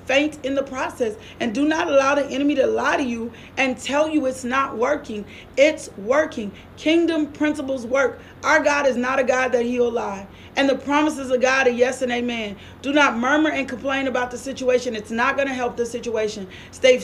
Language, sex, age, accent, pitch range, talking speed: English, female, 40-59, American, 250-300 Hz, 210 wpm